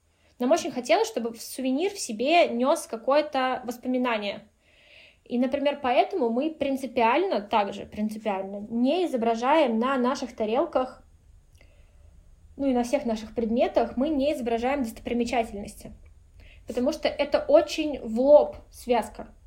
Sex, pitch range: female, 230-295 Hz